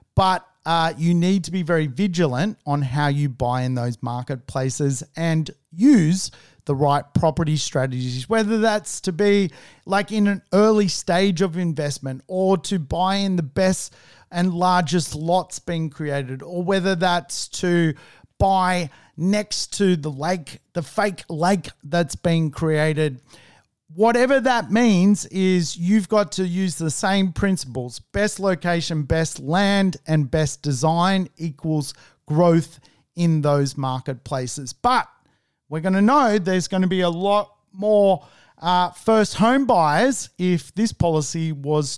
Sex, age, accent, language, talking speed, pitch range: male, 40-59, Australian, English, 145 wpm, 150-195 Hz